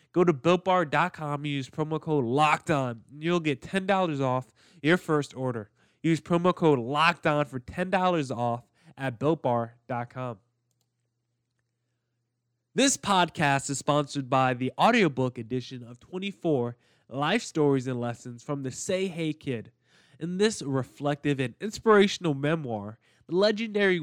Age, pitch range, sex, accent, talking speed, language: 20-39, 130-170 Hz, male, American, 125 wpm, English